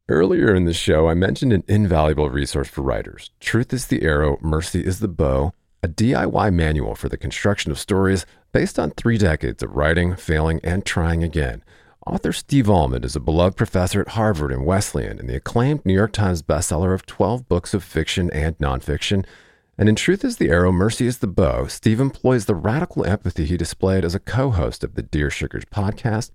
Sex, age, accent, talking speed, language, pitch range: male, 40-59, American, 200 wpm, English, 80-105 Hz